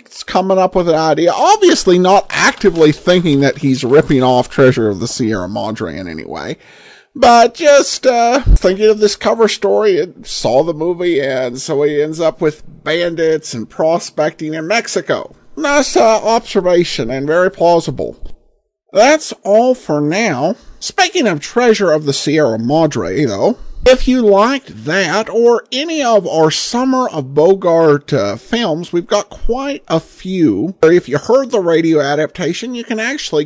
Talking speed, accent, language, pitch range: 160 wpm, American, English, 150-235 Hz